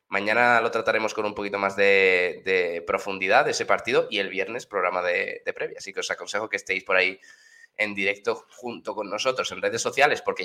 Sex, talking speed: male, 215 wpm